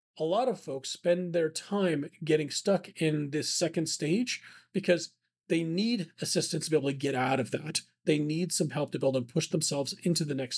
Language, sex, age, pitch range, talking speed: English, male, 40-59, 145-185 Hz, 215 wpm